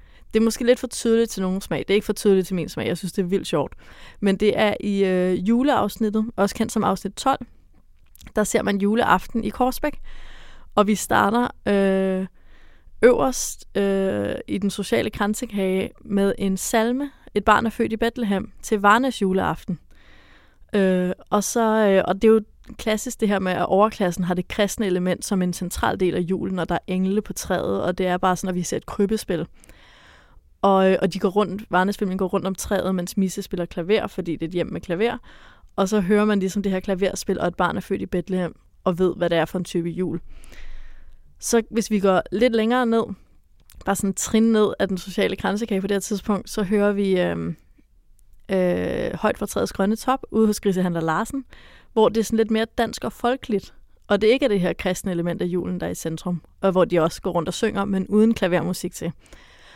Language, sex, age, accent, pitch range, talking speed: Danish, female, 20-39, native, 180-215 Hz, 215 wpm